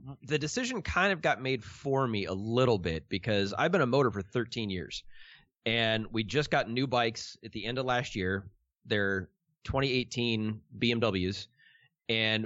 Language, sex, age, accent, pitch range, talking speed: English, male, 30-49, American, 105-145 Hz, 175 wpm